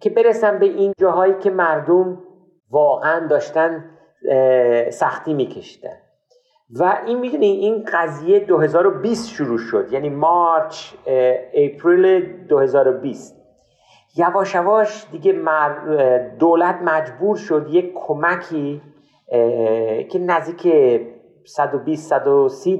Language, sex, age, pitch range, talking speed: Persian, male, 50-69, 155-205 Hz, 85 wpm